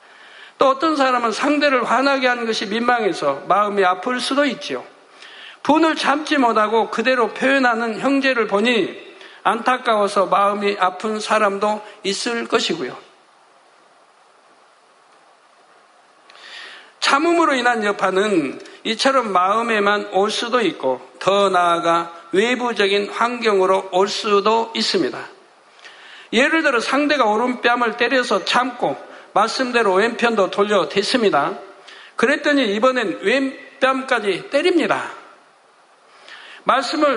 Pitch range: 210-265 Hz